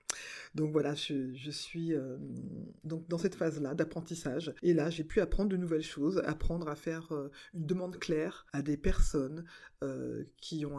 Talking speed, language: 170 wpm, French